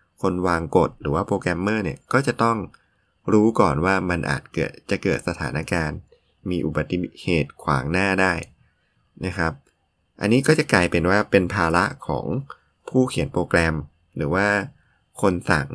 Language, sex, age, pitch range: Thai, male, 20-39, 80-100 Hz